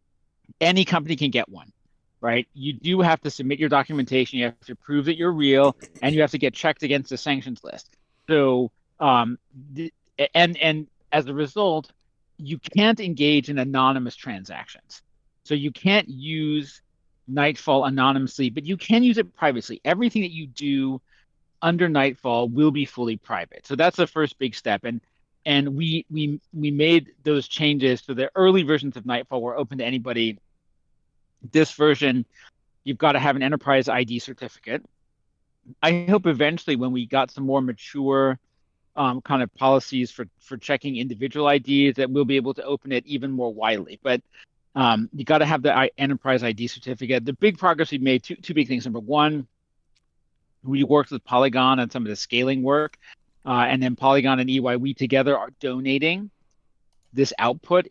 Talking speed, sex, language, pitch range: 180 wpm, male, English, 125-150 Hz